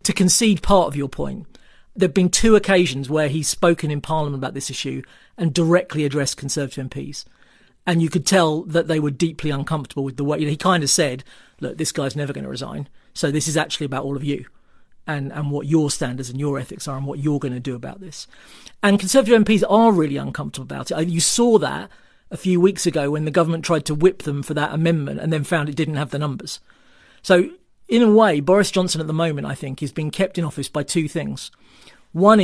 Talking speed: 230 wpm